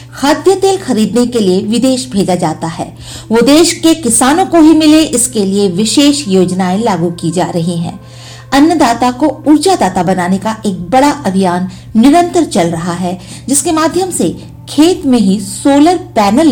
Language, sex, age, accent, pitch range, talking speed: Hindi, female, 50-69, native, 180-290 Hz, 165 wpm